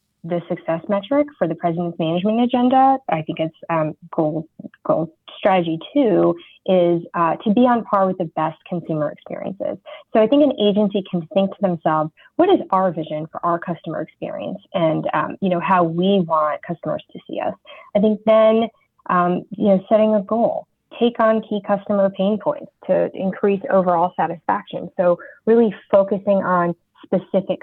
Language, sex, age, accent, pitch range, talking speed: English, female, 20-39, American, 165-210 Hz, 170 wpm